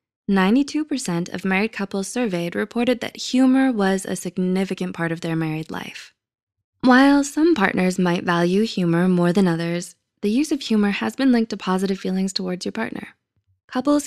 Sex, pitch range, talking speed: female, 170-220 Hz, 160 wpm